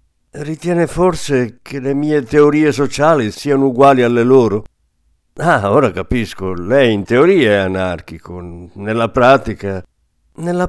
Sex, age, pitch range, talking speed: male, 60-79, 95-145 Hz, 125 wpm